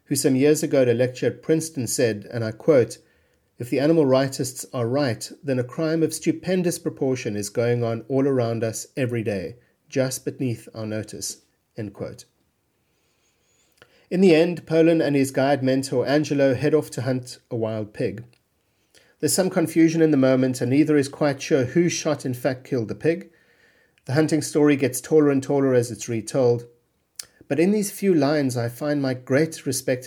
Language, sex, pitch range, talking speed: English, male, 115-150 Hz, 185 wpm